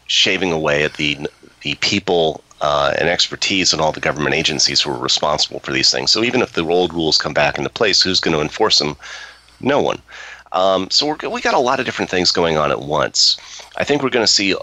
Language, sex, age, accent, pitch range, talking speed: English, male, 30-49, American, 75-95 Hz, 235 wpm